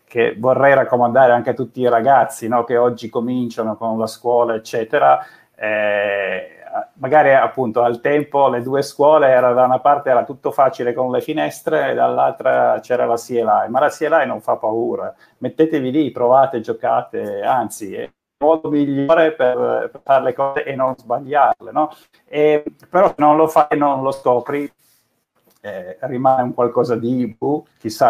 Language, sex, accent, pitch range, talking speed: Italian, male, native, 110-135 Hz, 165 wpm